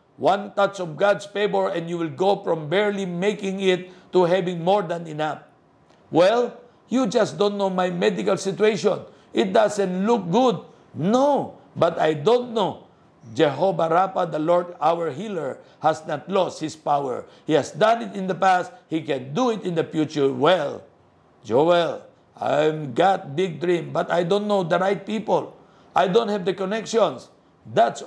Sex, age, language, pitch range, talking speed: male, 60-79, Filipino, 165-205 Hz, 170 wpm